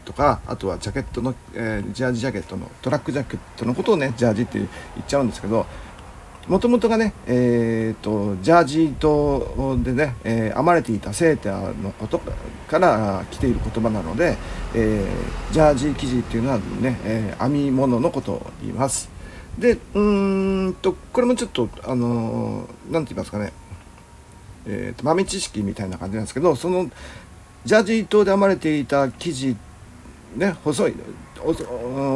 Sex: male